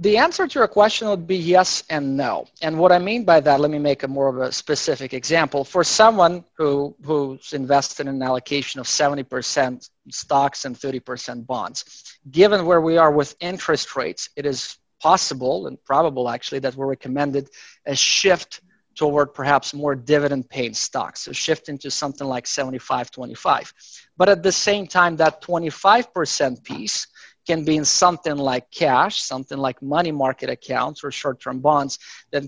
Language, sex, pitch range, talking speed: English, male, 130-155 Hz, 170 wpm